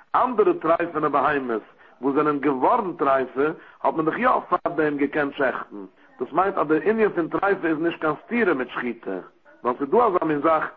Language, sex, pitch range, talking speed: English, male, 140-170 Hz, 205 wpm